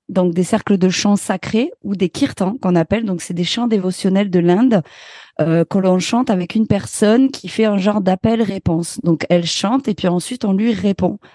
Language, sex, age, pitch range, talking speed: French, female, 30-49, 180-220 Hz, 205 wpm